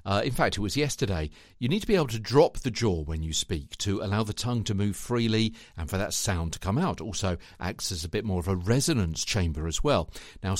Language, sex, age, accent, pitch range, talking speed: English, male, 50-69, British, 90-135 Hz, 255 wpm